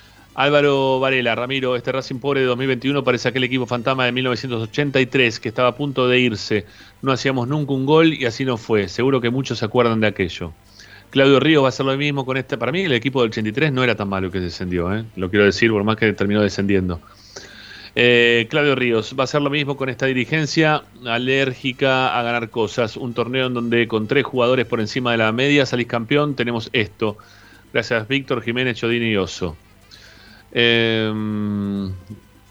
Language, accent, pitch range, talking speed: Spanish, Argentinian, 105-135 Hz, 195 wpm